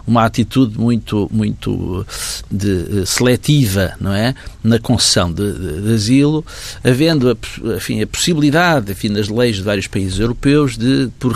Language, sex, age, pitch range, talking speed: Portuguese, male, 50-69, 105-140 Hz, 125 wpm